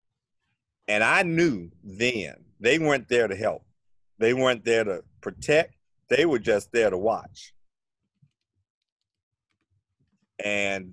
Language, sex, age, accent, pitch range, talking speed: English, male, 50-69, American, 100-135 Hz, 115 wpm